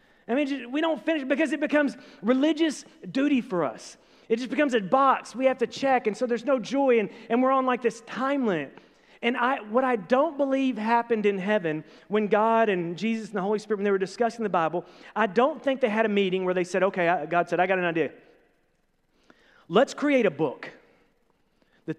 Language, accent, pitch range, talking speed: English, American, 195-270 Hz, 215 wpm